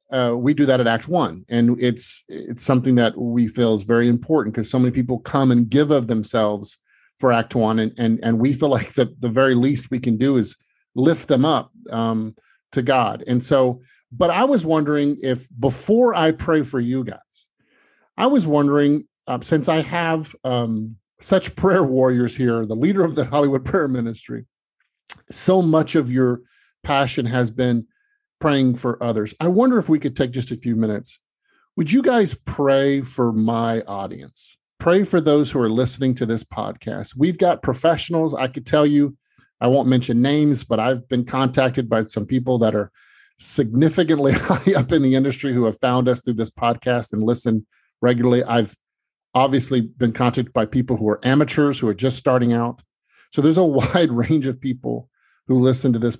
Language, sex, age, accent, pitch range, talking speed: English, male, 40-59, American, 120-145 Hz, 190 wpm